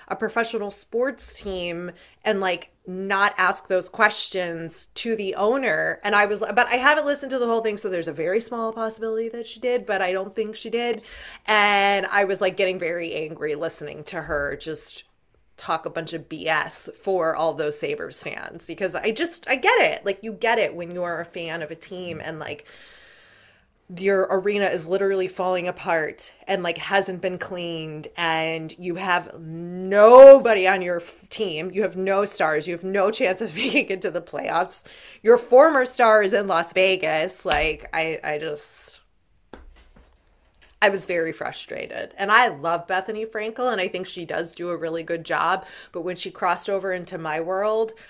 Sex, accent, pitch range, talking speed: female, American, 170-220 Hz, 185 wpm